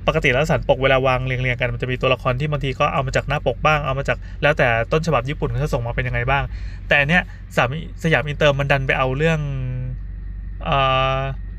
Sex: male